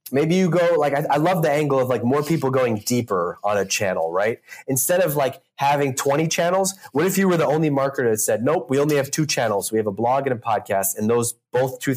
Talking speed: 255 wpm